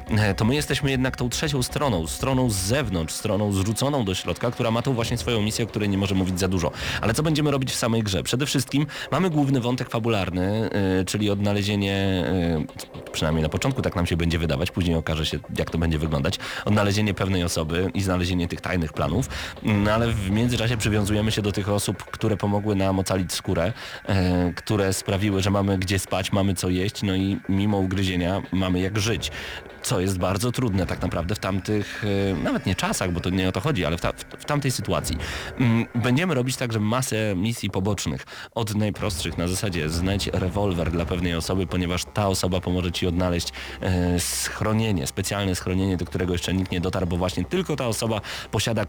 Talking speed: 190 wpm